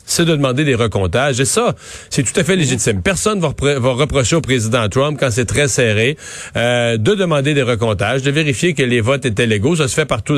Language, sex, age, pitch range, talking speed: French, male, 40-59, 120-160 Hz, 230 wpm